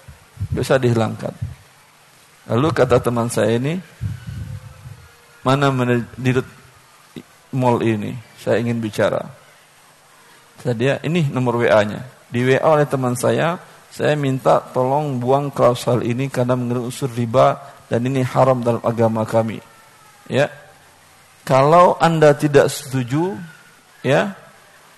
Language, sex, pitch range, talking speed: Indonesian, male, 120-175 Hz, 110 wpm